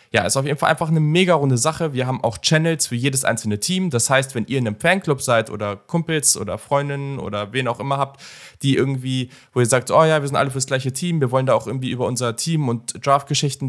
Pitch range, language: 115-145 Hz, German